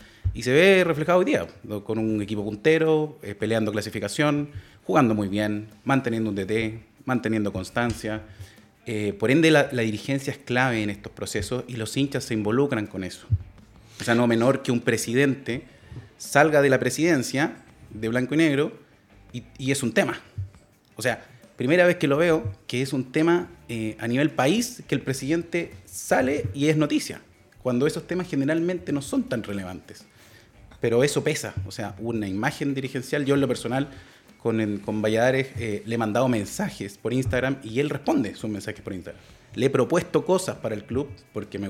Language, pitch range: Spanish, 105-140 Hz